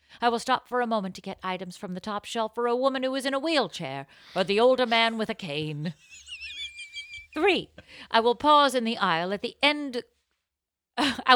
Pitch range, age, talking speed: 190-245 Hz, 50-69, 205 wpm